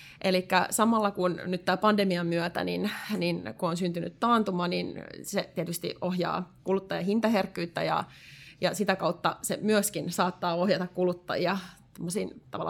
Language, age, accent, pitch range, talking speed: Finnish, 20-39, native, 170-195 Hz, 130 wpm